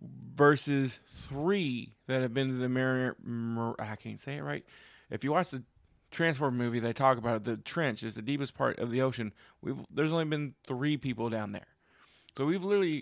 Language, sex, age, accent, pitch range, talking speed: English, male, 20-39, American, 115-150 Hz, 195 wpm